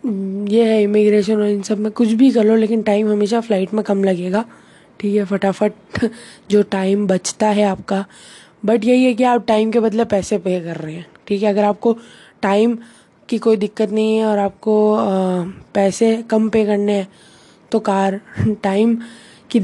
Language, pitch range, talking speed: Hindi, 200-230 Hz, 185 wpm